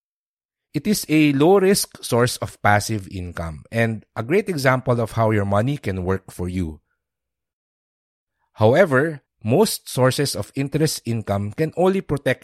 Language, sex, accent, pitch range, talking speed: English, male, Filipino, 95-130 Hz, 140 wpm